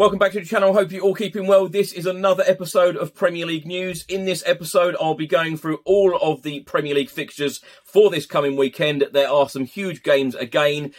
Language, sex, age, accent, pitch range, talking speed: English, male, 30-49, British, 145-180 Hz, 225 wpm